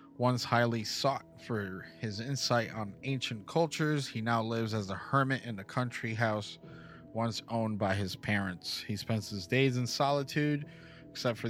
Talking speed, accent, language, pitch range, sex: 165 wpm, American, English, 110-140 Hz, male